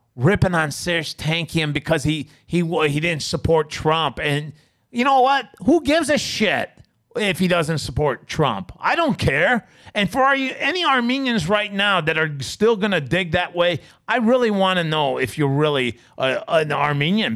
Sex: male